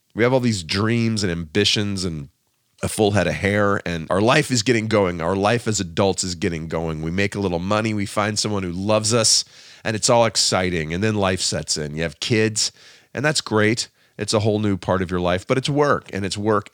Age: 40-59